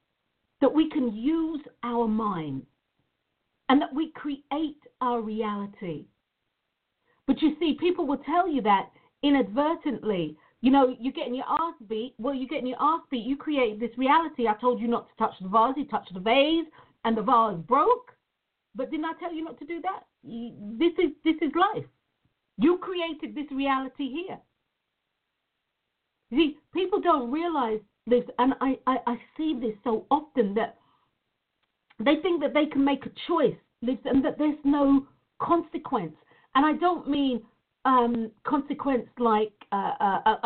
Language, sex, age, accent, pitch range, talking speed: English, female, 50-69, British, 230-315 Hz, 165 wpm